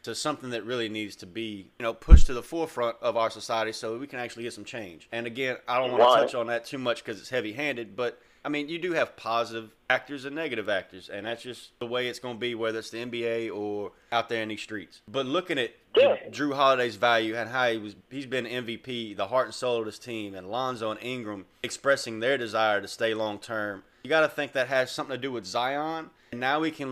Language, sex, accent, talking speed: English, male, American, 255 wpm